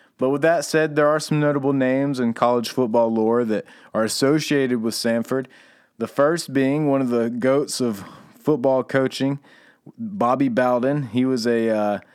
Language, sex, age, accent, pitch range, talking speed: English, male, 30-49, American, 105-135 Hz, 170 wpm